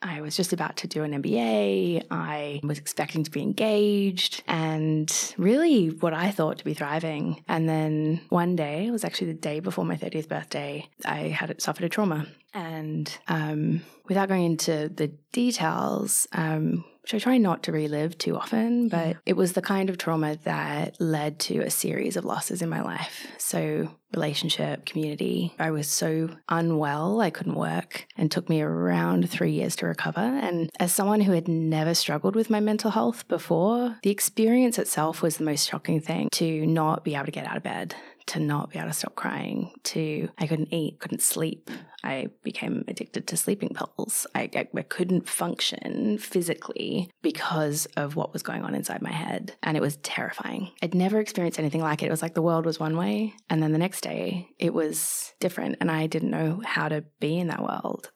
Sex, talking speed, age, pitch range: female, 195 wpm, 20-39, 155-195 Hz